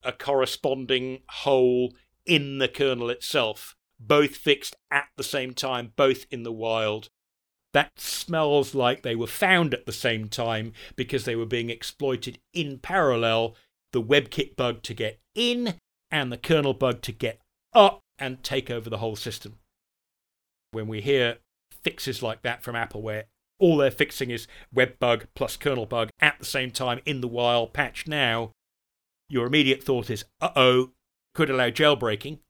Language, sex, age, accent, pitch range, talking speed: English, male, 40-59, British, 110-140 Hz, 165 wpm